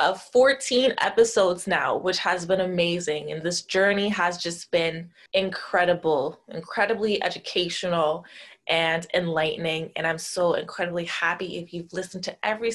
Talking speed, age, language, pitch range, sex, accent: 135 wpm, 20-39, English, 175-215 Hz, female, American